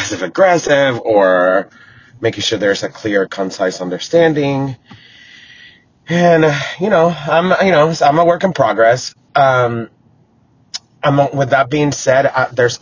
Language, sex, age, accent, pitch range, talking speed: English, male, 30-49, American, 105-135 Hz, 140 wpm